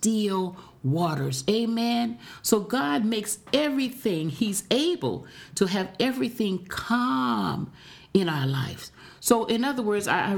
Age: 50-69